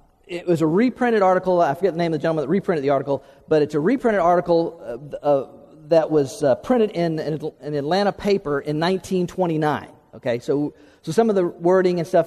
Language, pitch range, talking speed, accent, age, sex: English, 150-185 Hz, 205 wpm, American, 50-69, male